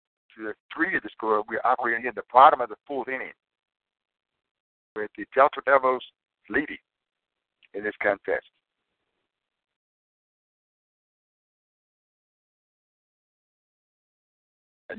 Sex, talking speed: male, 90 wpm